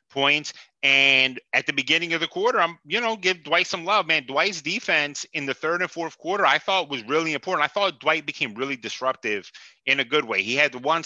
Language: English